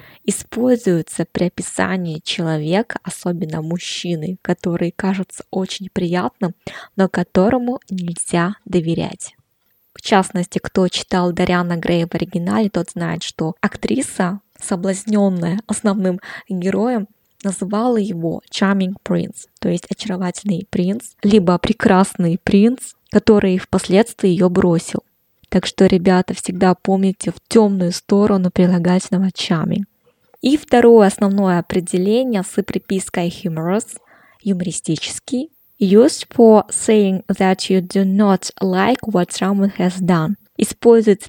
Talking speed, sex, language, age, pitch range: 110 wpm, female, Russian, 20-39, 180-205 Hz